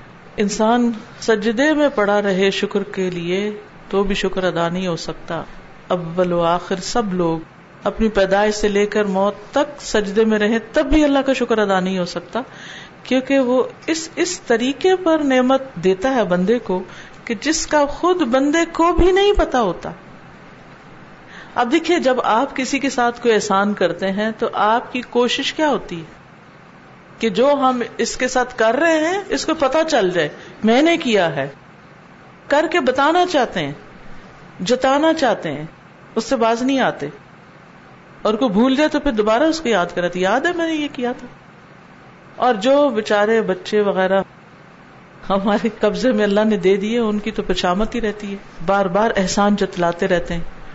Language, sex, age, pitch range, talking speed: Urdu, female, 50-69, 190-260 Hz, 160 wpm